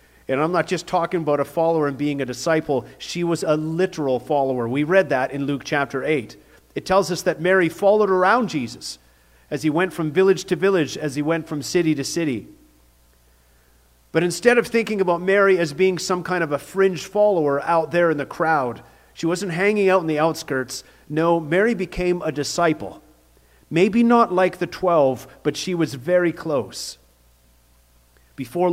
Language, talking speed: English, 185 wpm